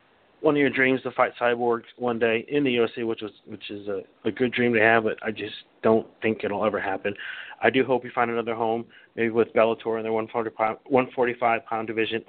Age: 40-59